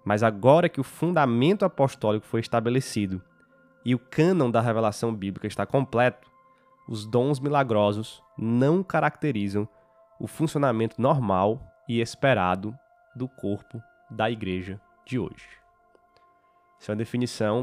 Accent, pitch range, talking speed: Brazilian, 110-150 Hz, 125 wpm